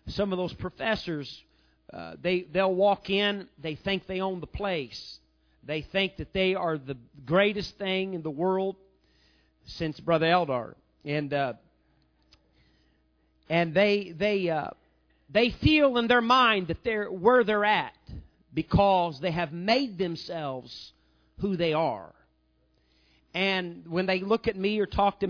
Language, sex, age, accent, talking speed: English, male, 40-59, American, 145 wpm